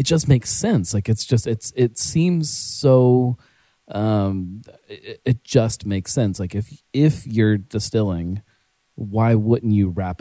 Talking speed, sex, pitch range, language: 155 wpm, male, 90-115 Hz, English